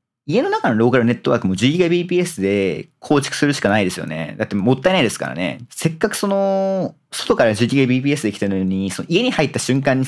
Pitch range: 105-155 Hz